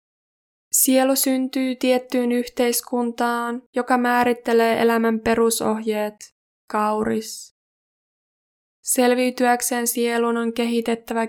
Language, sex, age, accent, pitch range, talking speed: Finnish, female, 20-39, native, 220-245 Hz, 70 wpm